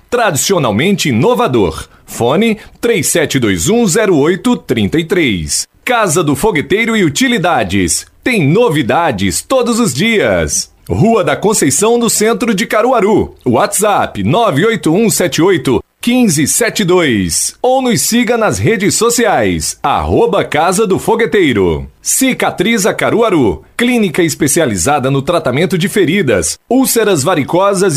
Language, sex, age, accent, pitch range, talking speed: Portuguese, male, 40-59, Brazilian, 185-235 Hz, 90 wpm